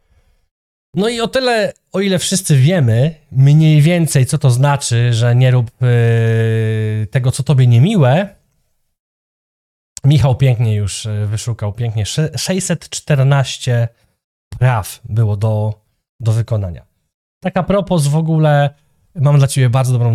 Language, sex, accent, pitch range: Polish, male, native, 115-155 Hz